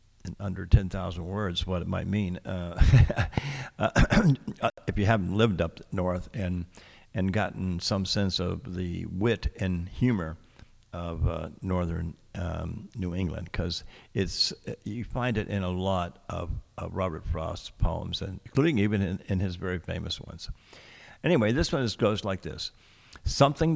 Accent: American